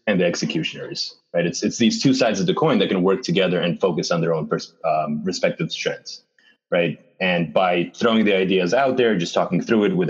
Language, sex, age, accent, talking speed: English, male, 30-49, American, 225 wpm